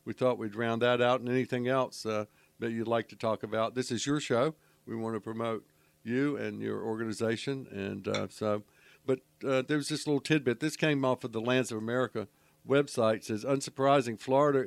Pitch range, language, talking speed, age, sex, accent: 110-130 Hz, English, 205 wpm, 60-79, male, American